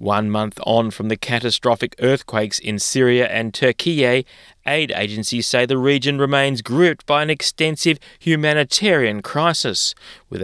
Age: 20-39